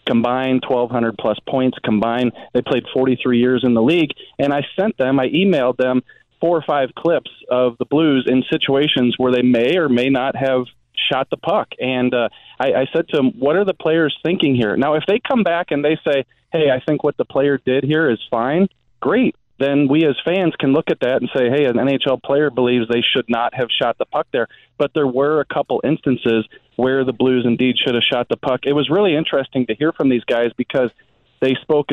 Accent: American